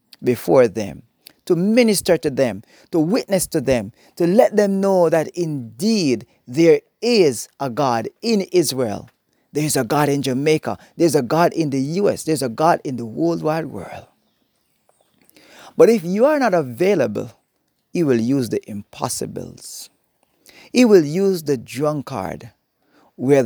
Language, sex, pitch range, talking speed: English, male, 125-190 Hz, 150 wpm